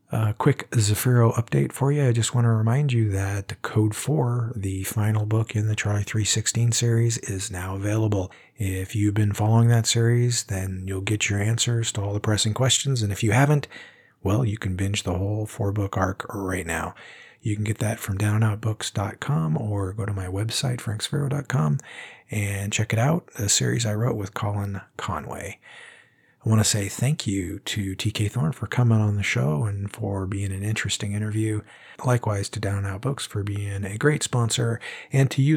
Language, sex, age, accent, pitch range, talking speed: English, male, 40-59, American, 100-115 Hz, 190 wpm